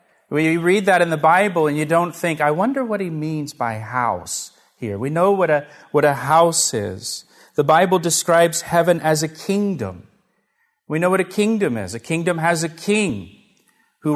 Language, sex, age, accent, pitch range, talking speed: English, male, 40-59, American, 150-175 Hz, 195 wpm